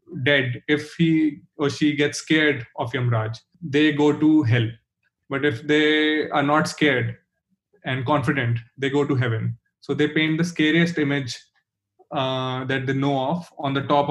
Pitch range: 135-175 Hz